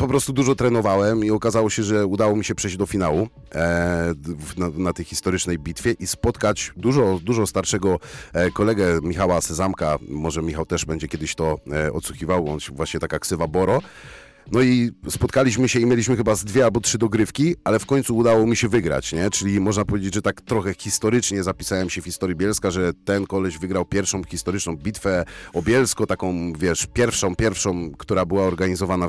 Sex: male